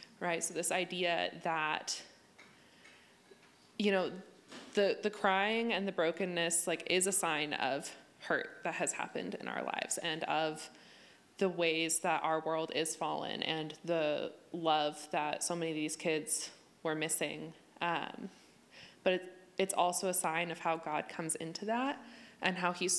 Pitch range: 165-195 Hz